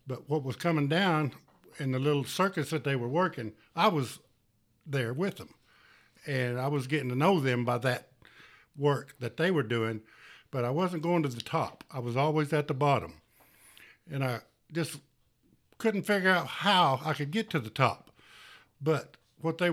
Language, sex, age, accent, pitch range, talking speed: English, male, 60-79, American, 130-155 Hz, 185 wpm